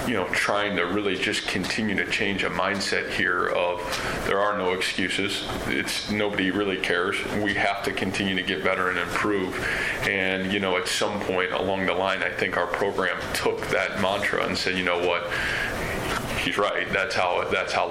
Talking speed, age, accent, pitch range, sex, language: 190 wpm, 20-39, American, 95-105 Hz, male, English